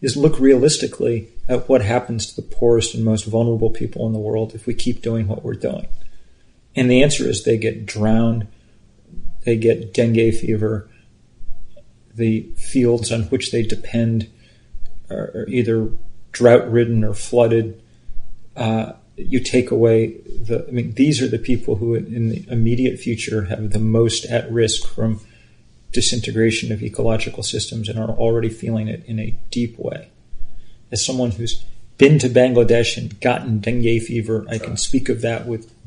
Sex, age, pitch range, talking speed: male, 40-59, 110-125 Hz, 160 wpm